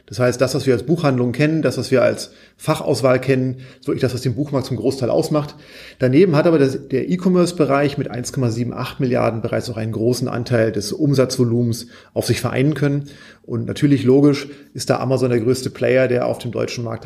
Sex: male